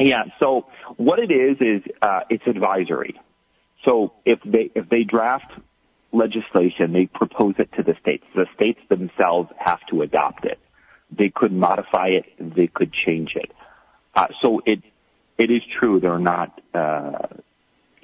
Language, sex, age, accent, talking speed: English, male, 40-59, American, 155 wpm